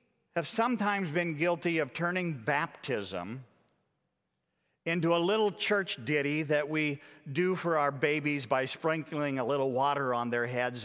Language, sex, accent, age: English, male, American, 50-69